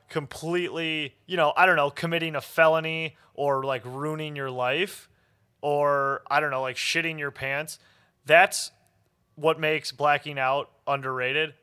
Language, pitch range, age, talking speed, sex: English, 125-155 Hz, 30-49, 145 wpm, male